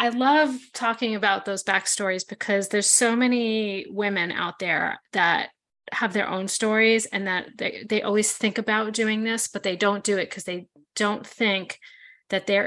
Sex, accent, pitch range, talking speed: female, American, 190-225 Hz, 180 wpm